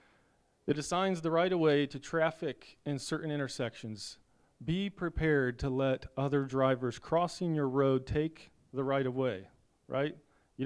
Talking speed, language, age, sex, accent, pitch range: 130 wpm, English, 40-59, male, American, 125-160 Hz